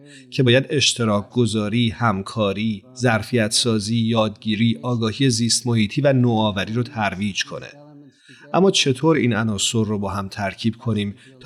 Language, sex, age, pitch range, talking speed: Persian, male, 40-59, 110-135 Hz, 135 wpm